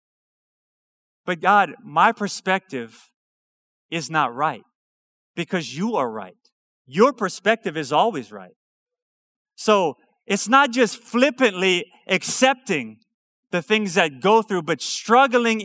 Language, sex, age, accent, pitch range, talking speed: English, male, 30-49, American, 180-230 Hz, 110 wpm